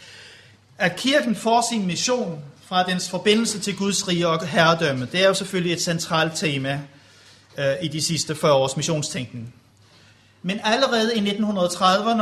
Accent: native